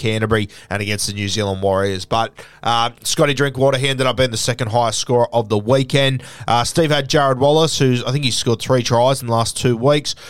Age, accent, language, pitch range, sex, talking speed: 20-39, Australian, English, 105-130 Hz, male, 225 wpm